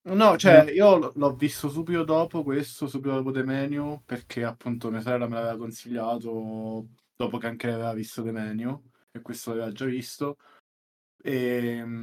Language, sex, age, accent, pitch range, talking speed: Italian, male, 20-39, native, 115-140 Hz, 150 wpm